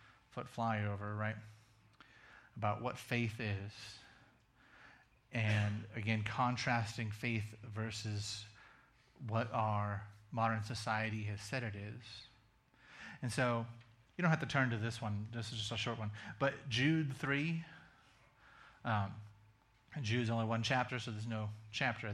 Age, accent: 30-49, American